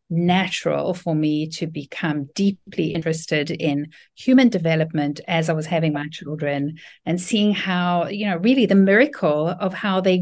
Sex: female